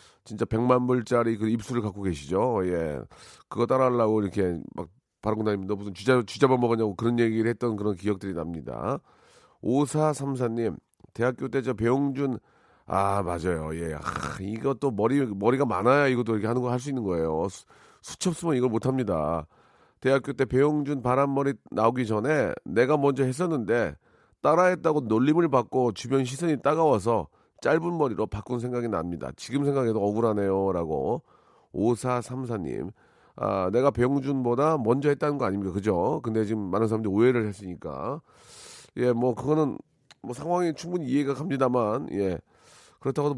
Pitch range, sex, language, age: 110-140 Hz, male, Korean, 40-59